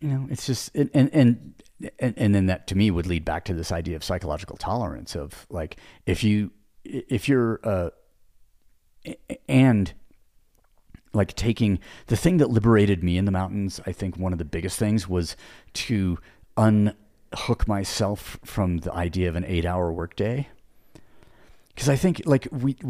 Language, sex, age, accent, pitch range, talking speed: English, male, 40-59, American, 90-120 Hz, 170 wpm